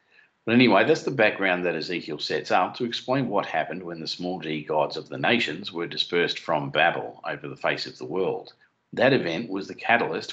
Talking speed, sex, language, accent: 210 wpm, male, English, Australian